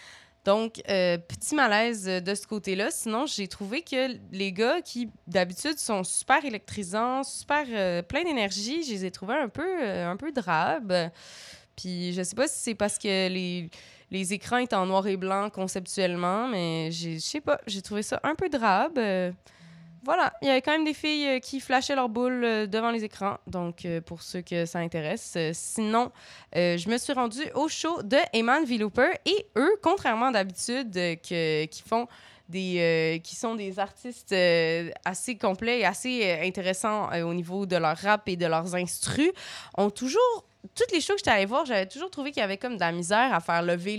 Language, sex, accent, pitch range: French, female, Canadian, 180-260 Hz